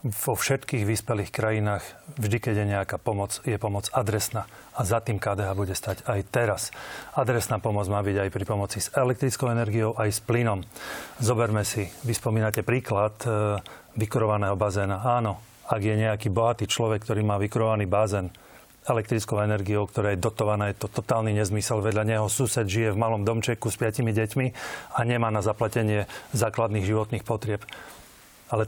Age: 30-49